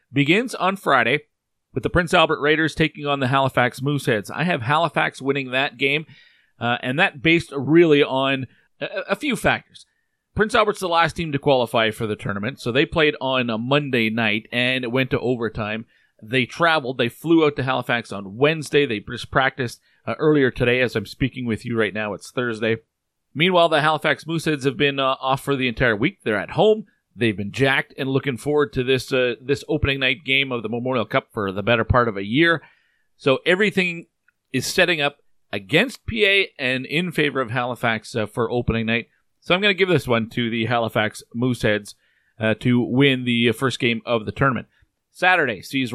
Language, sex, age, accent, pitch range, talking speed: English, male, 40-59, American, 120-150 Hz, 200 wpm